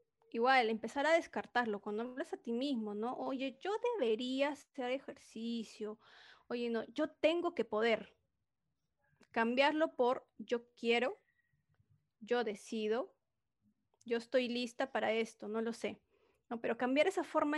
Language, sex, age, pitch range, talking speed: Spanish, female, 30-49, 225-280 Hz, 135 wpm